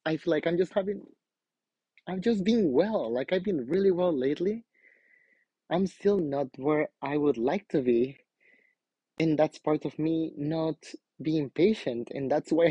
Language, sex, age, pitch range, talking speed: English, male, 30-49, 130-160 Hz, 170 wpm